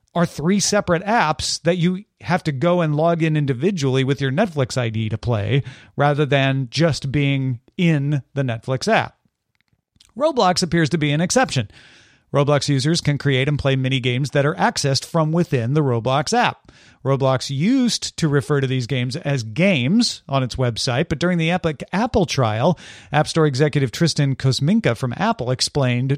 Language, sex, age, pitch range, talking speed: English, male, 40-59, 130-180 Hz, 170 wpm